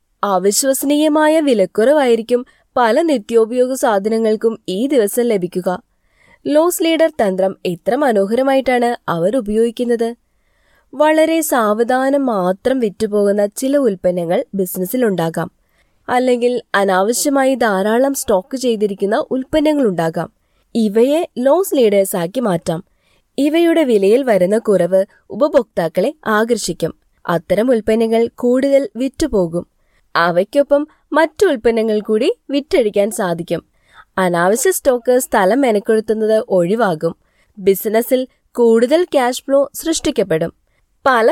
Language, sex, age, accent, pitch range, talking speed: Malayalam, female, 20-39, native, 195-265 Hz, 90 wpm